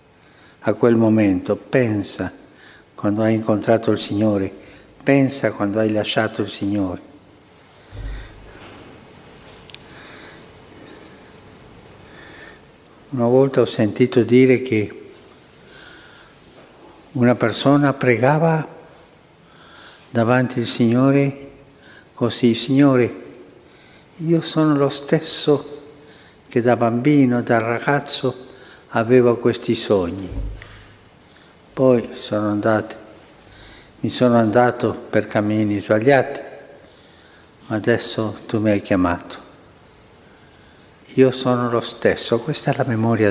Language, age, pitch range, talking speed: Italian, 60-79, 105-130 Hz, 90 wpm